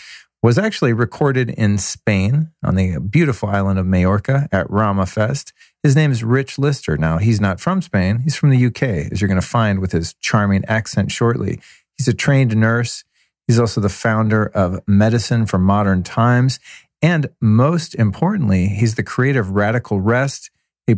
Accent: American